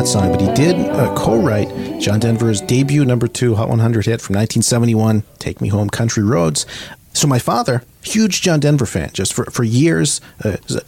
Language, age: English, 40-59